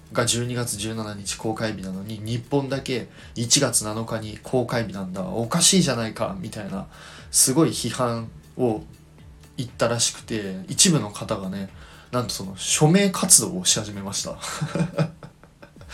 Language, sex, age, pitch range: Japanese, male, 20-39, 105-145 Hz